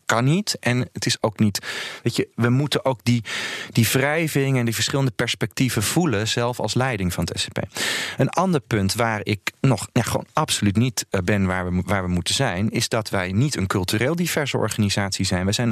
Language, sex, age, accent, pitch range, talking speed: Dutch, male, 40-59, Dutch, 100-130 Hz, 205 wpm